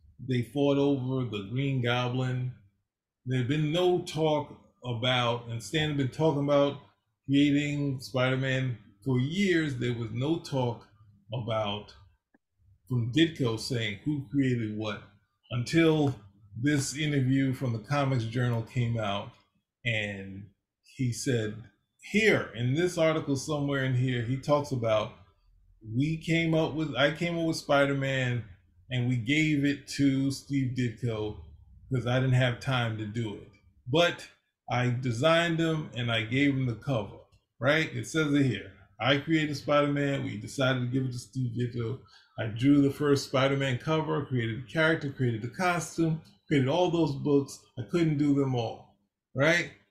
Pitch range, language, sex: 115-145 Hz, English, male